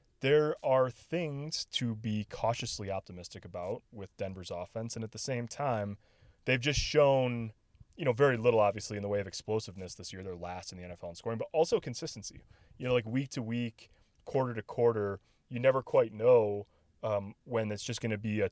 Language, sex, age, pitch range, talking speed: English, male, 20-39, 100-120 Hz, 200 wpm